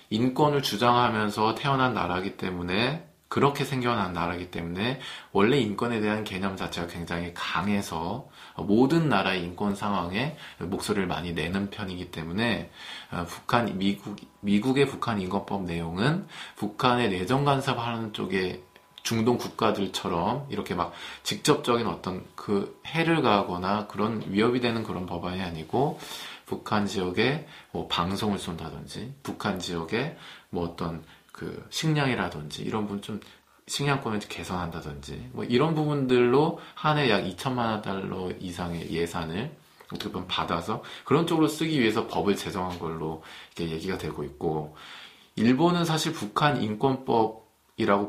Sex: male